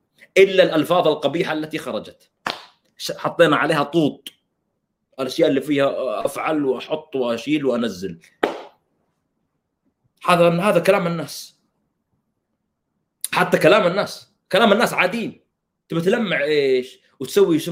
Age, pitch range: 30-49, 135-215 Hz